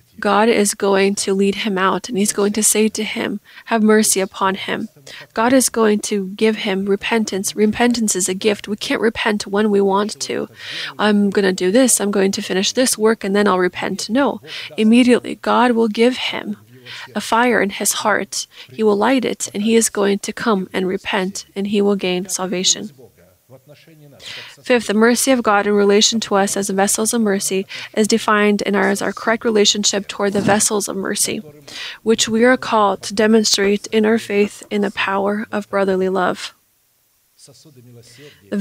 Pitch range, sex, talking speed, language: 195-220 Hz, female, 185 wpm, English